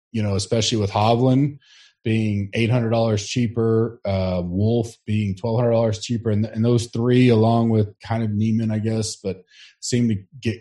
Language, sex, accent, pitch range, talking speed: English, male, American, 100-120 Hz, 165 wpm